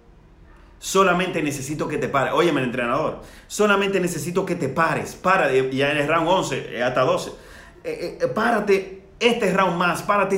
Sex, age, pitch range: male, 30-49, 135-180 Hz